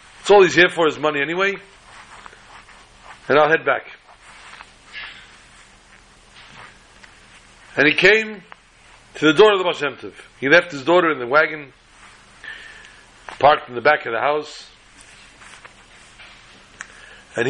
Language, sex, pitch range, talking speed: English, male, 145-180 Hz, 120 wpm